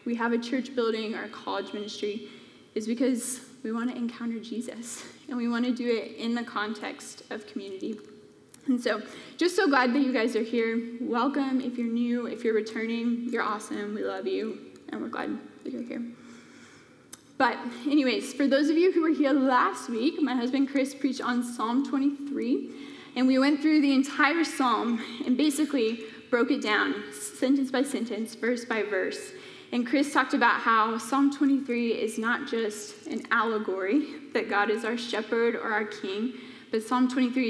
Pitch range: 225-265 Hz